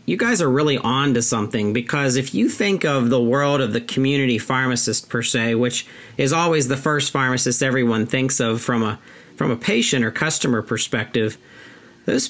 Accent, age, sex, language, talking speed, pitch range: American, 40-59, male, English, 185 wpm, 120-140 Hz